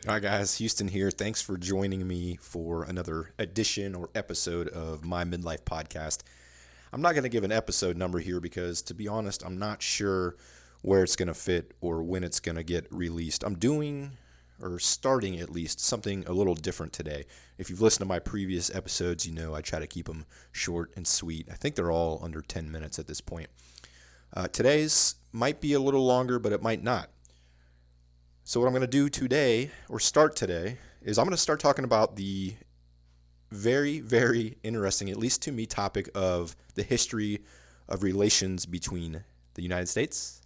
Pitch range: 80-105 Hz